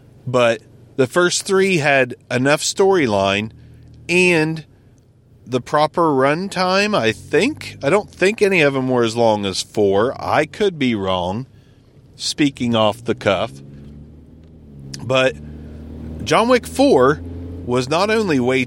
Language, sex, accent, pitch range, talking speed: English, male, American, 100-155 Hz, 130 wpm